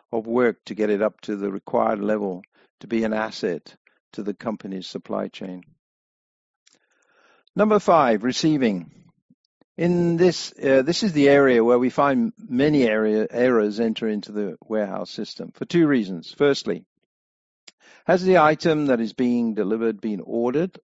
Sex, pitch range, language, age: male, 110-145 Hz, English, 60-79